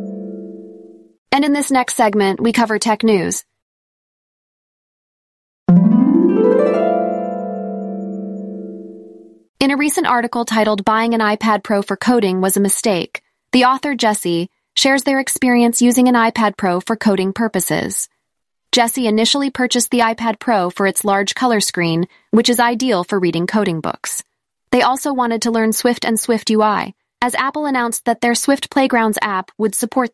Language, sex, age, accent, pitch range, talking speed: English, female, 20-39, American, 200-245 Hz, 145 wpm